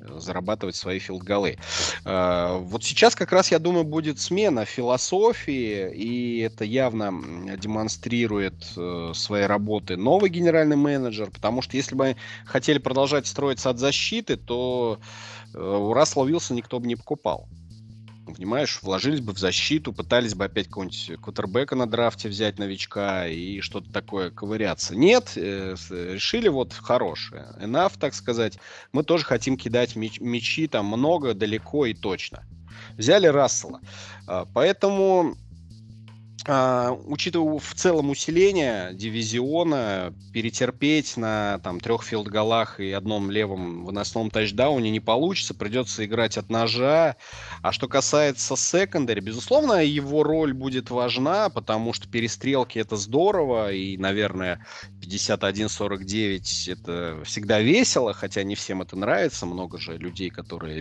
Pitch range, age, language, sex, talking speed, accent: 95-125 Hz, 30-49, Russian, male, 125 wpm, native